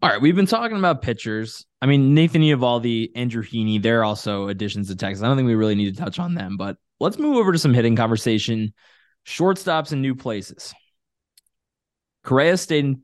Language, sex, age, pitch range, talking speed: English, male, 20-39, 105-145 Hz, 200 wpm